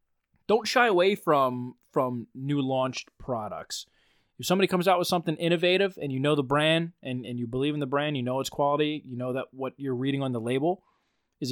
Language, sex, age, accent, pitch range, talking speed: English, male, 20-39, American, 130-165 Hz, 215 wpm